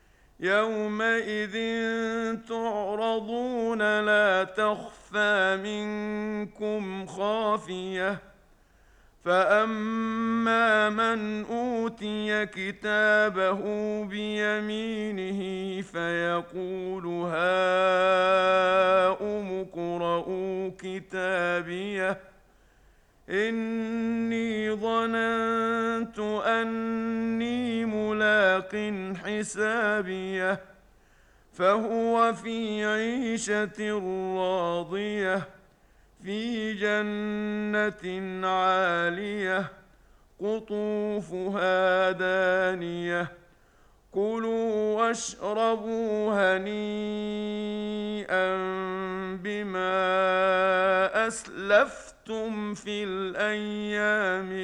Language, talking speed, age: Arabic, 40 wpm, 50-69